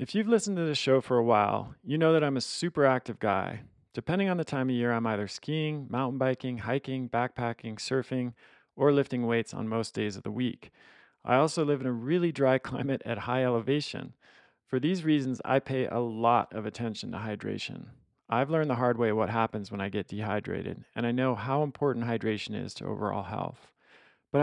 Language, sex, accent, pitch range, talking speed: English, male, American, 110-135 Hz, 205 wpm